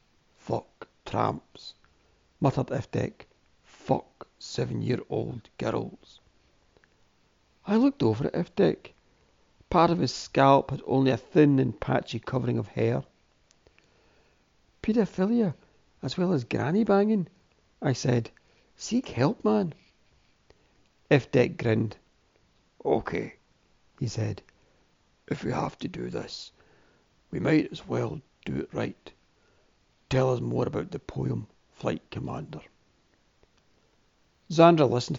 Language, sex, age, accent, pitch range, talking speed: English, male, 60-79, British, 130-175 Hz, 110 wpm